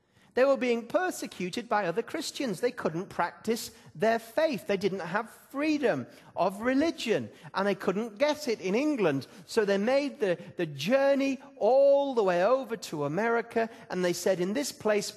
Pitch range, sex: 150-225 Hz, male